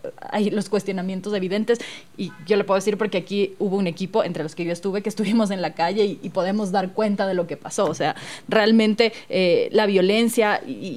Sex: female